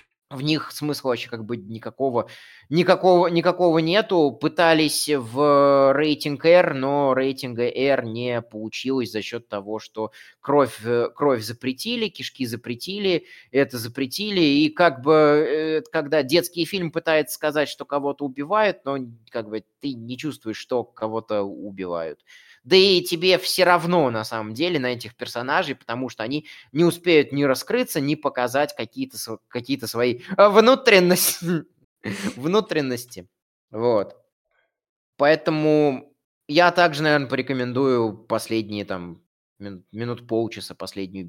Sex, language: male, Russian